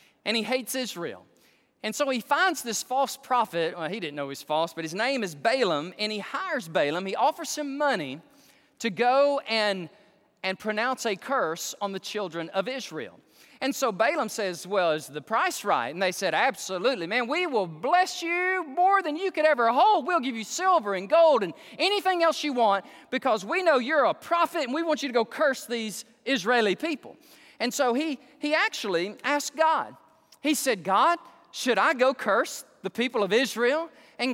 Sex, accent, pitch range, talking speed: male, American, 210-310 Hz, 195 wpm